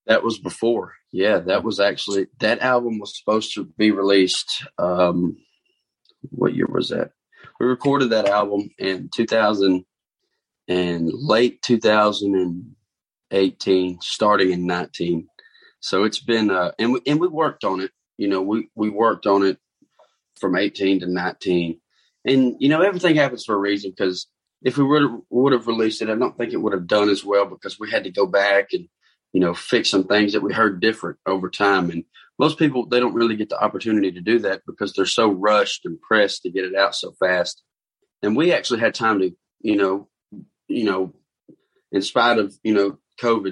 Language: English